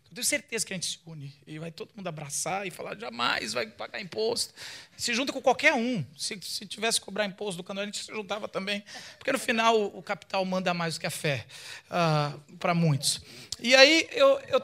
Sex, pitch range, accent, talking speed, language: male, 155-215 Hz, Brazilian, 220 wpm, Portuguese